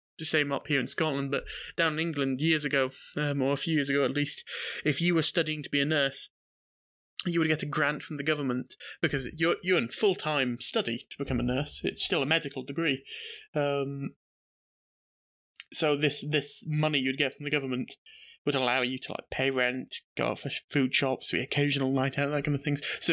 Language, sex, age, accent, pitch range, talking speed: English, male, 20-39, British, 135-155 Hz, 215 wpm